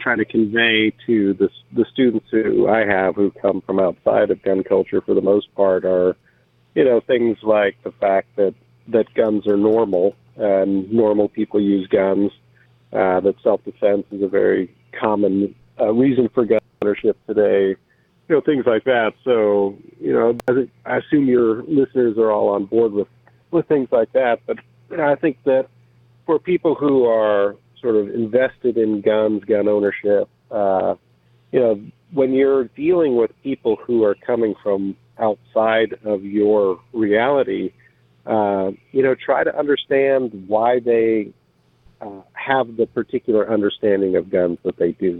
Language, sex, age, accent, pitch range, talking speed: English, male, 50-69, American, 100-125 Hz, 165 wpm